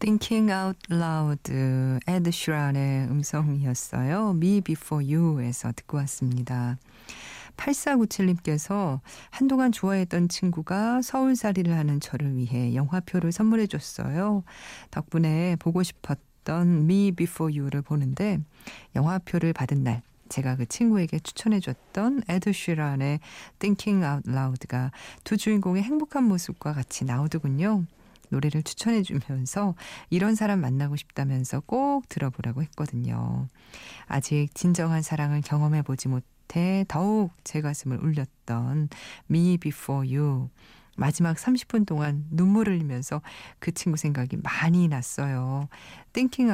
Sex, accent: female, native